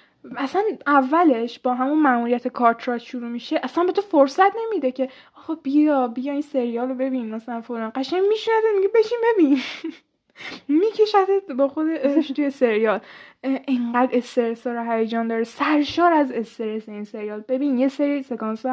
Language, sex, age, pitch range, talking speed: Persian, female, 10-29, 235-295 Hz, 155 wpm